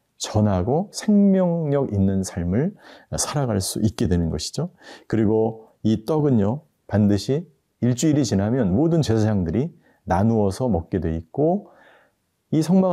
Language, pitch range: Korean, 100-145 Hz